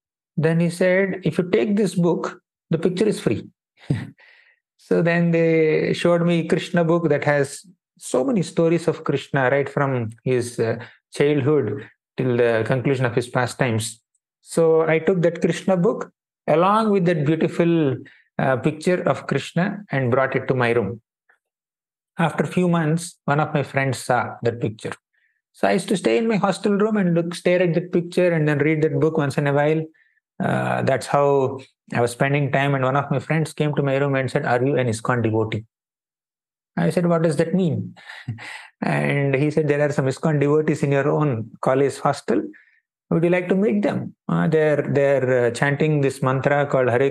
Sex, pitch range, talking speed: male, 130-170 Hz, 190 wpm